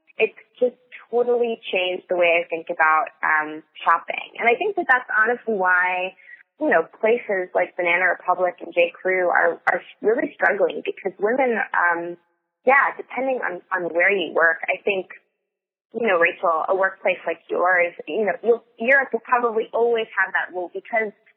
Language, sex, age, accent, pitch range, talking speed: English, female, 20-39, American, 170-230 Hz, 170 wpm